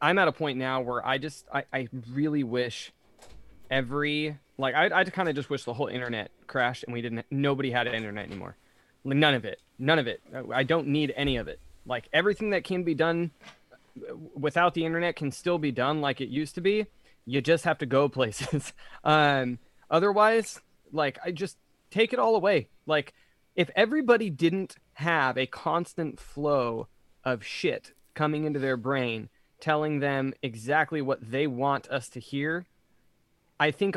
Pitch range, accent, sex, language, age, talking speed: 130-160 Hz, American, male, English, 20-39, 180 wpm